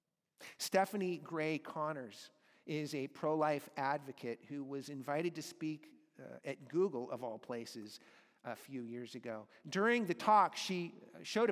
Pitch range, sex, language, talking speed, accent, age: 155-205 Hz, male, English, 145 wpm, American, 50-69